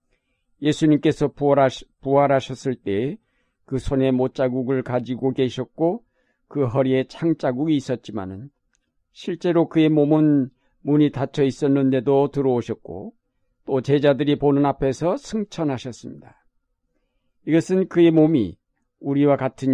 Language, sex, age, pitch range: Korean, male, 50-69, 130-155 Hz